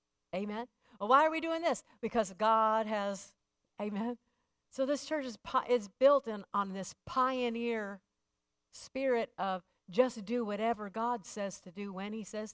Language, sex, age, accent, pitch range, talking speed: English, female, 50-69, American, 200-250 Hz, 165 wpm